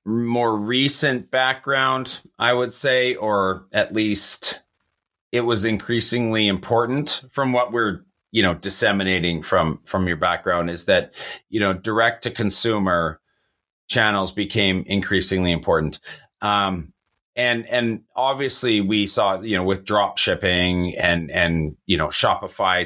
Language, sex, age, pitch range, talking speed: English, male, 30-49, 95-120 Hz, 130 wpm